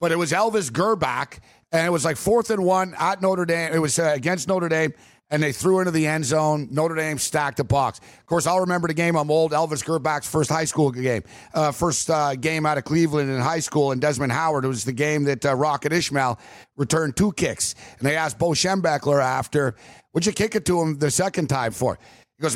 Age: 50-69